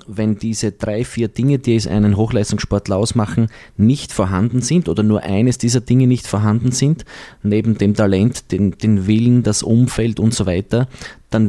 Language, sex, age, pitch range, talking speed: German, male, 20-39, 95-110 Hz, 170 wpm